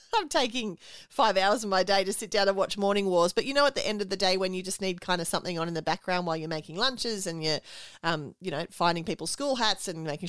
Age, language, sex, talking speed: 30-49, English, female, 285 wpm